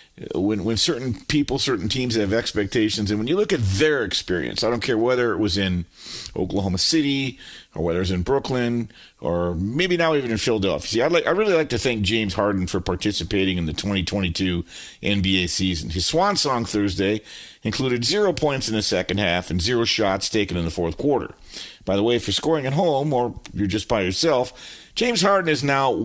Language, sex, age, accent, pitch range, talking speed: English, male, 50-69, American, 100-145 Hz, 200 wpm